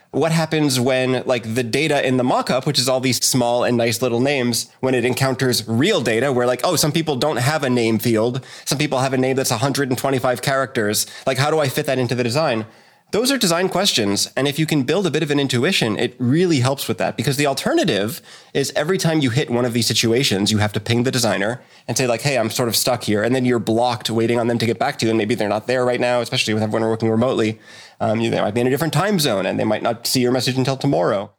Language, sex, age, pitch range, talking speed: English, male, 20-39, 110-135 Hz, 275 wpm